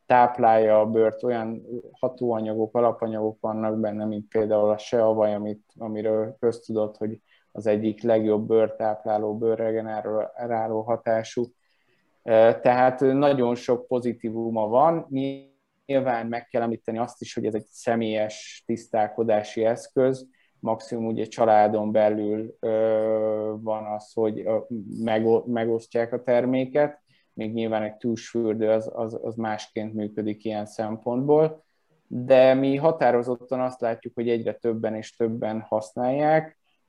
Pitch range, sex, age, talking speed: 110-130 Hz, male, 20-39, 110 wpm